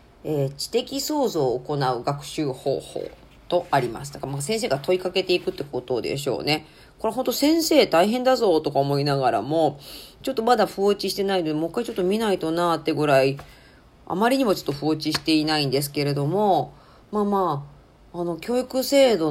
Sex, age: female, 40-59